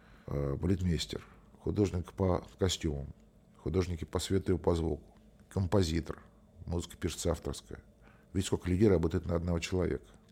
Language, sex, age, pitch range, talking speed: Russian, male, 50-69, 80-100 Hz, 120 wpm